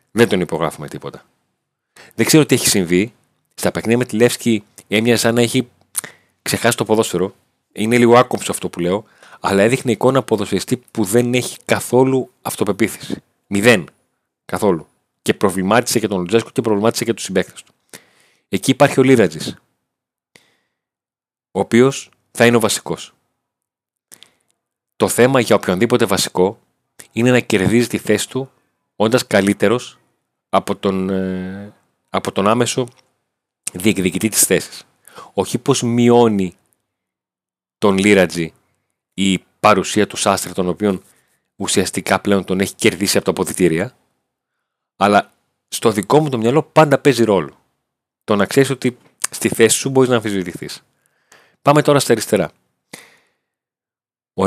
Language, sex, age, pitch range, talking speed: Greek, male, 30-49, 95-125 Hz, 135 wpm